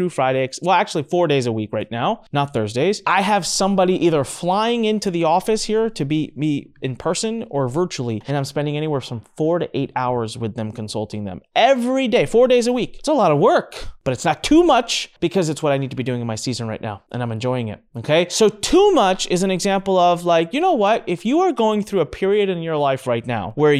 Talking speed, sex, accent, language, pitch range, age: 250 wpm, male, American, English, 135-220 Hz, 30-49